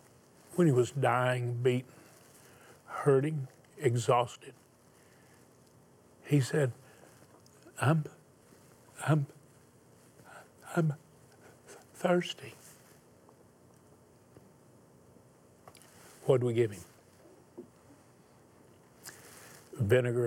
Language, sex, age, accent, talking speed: English, male, 60-79, American, 55 wpm